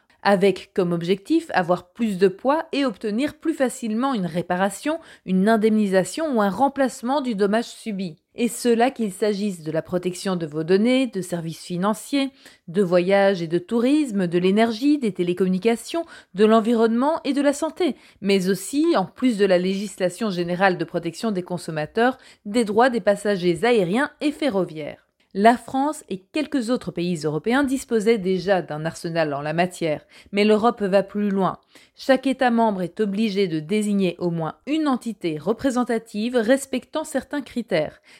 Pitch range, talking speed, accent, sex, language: 180-255 Hz, 160 wpm, French, female, French